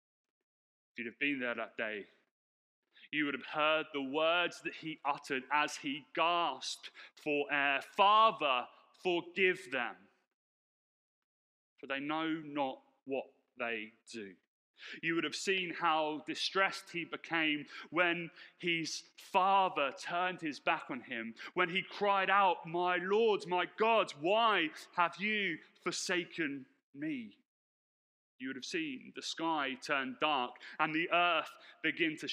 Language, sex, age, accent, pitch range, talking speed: English, male, 30-49, British, 130-185 Hz, 135 wpm